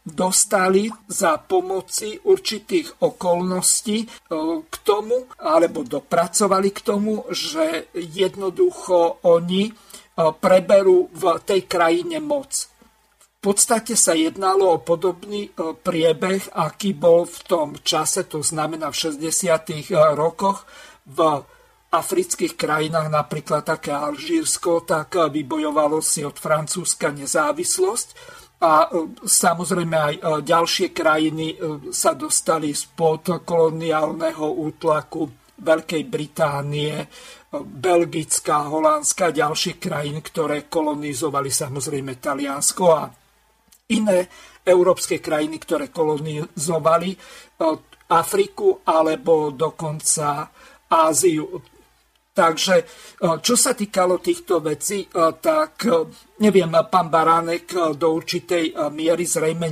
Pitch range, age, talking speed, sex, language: 160-235 Hz, 50-69, 90 wpm, male, Slovak